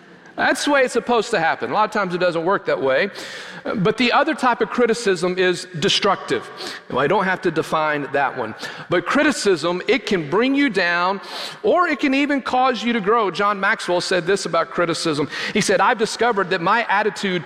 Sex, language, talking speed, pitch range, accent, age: male, English, 205 wpm, 180-240 Hz, American, 40-59